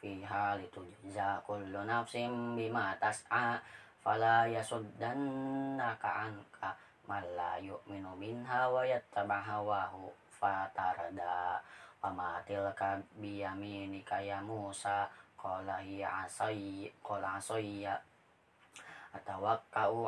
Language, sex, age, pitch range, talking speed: Indonesian, female, 20-39, 100-120 Hz, 70 wpm